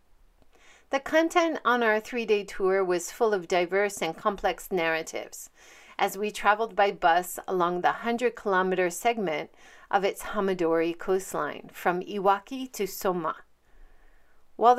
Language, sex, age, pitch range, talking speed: English, female, 40-59, 180-240 Hz, 125 wpm